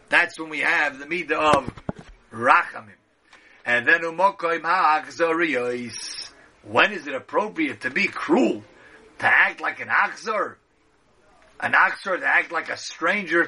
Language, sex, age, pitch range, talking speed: English, male, 40-59, 155-185 Hz, 135 wpm